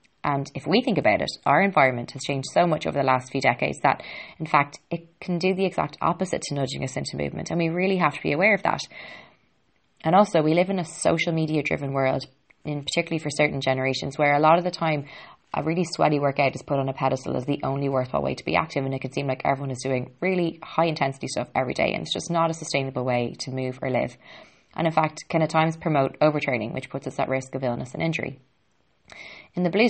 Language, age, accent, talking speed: English, 20-39, Irish, 245 wpm